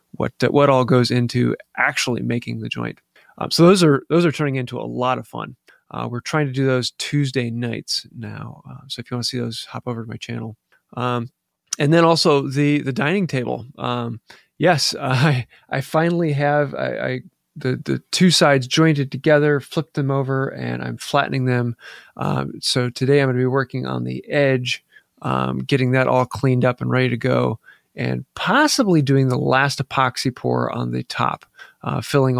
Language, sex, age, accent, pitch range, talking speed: English, male, 30-49, American, 120-145 Hz, 195 wpm